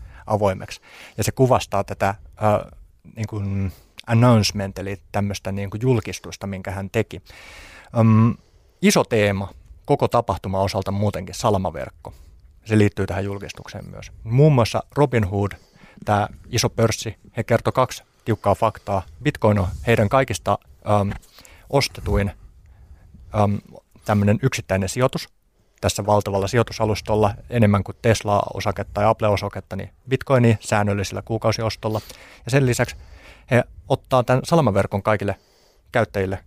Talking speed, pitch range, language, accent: 115 wpm, 100-115 Hz, Finnish, native